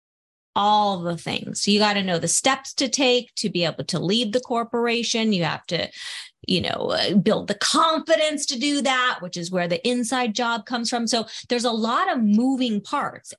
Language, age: English, 30-49